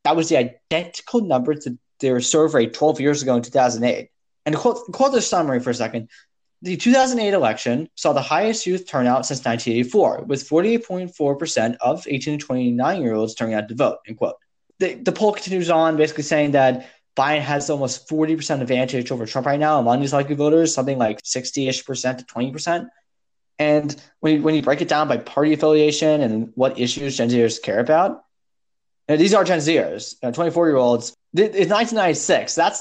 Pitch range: 125-165 Hz